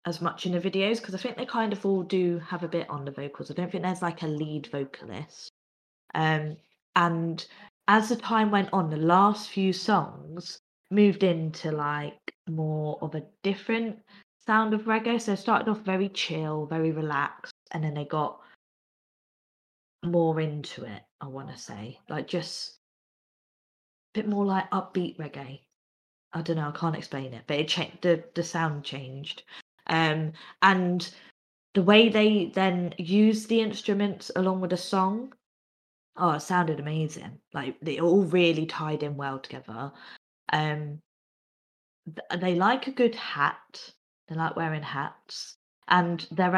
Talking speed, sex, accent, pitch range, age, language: 160 wpm, female, British, 155-195 Hz, 20-39, English